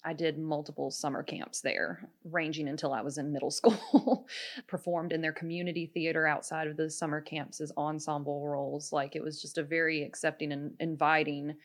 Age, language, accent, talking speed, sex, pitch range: 20-39, English, American, 180 wpm, female, 150-175 Hz